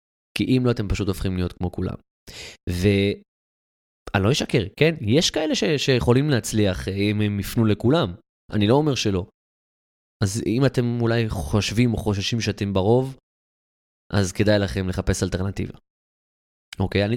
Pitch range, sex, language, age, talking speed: 90-110 Hz, male, Hebrew, 20-39, 145 wpm